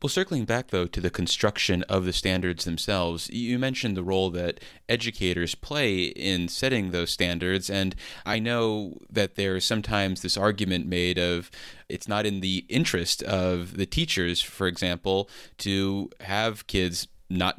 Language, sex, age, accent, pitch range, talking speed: English, male, 30-49, American, 90-105 Hz, 160 wpm